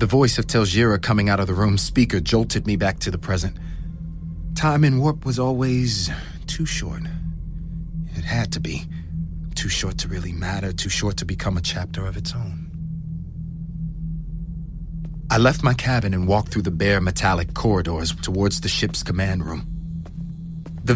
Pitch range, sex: 85-125 Hz, male